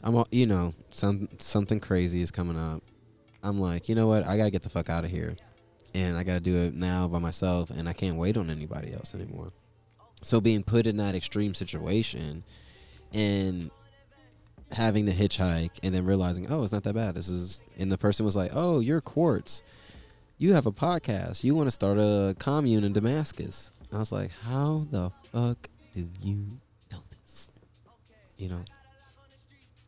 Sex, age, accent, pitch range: male, 20-39, American, 90-110 Hz